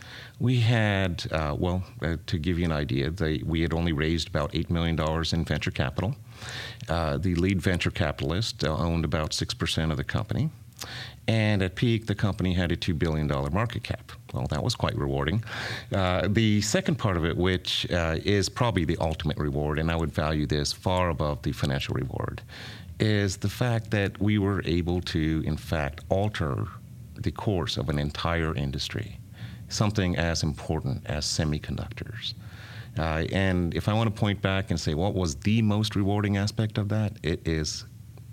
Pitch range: 85-110 Hz